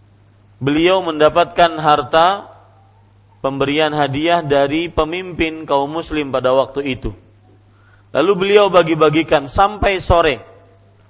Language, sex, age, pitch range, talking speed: Malay, male, 40-59, 100-170 Hz, 90 wpm